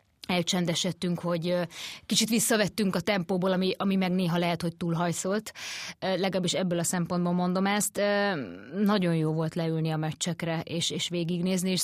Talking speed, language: 145 wpm, Hungarian